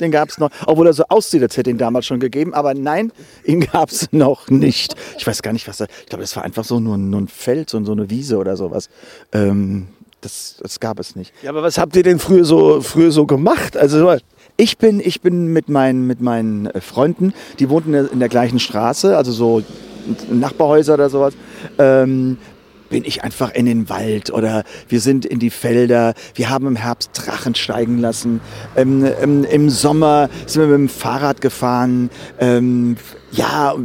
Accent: German